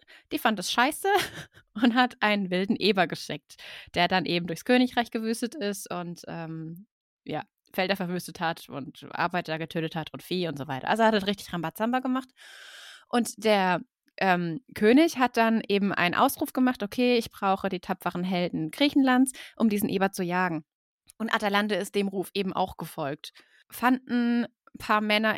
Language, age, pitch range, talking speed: German, 20-39, 185-245 Hz, 170 wpm